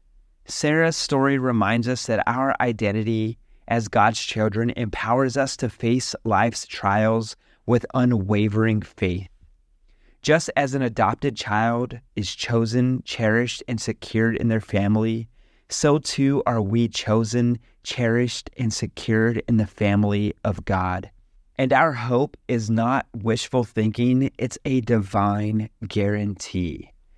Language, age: English, 30-49